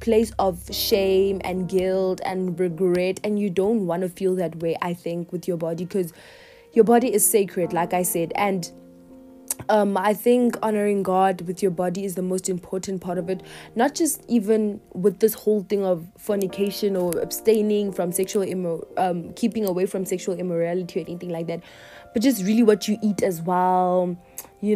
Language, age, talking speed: English, 20-39, 185 wpm